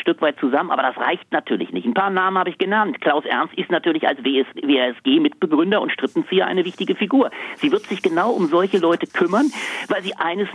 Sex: male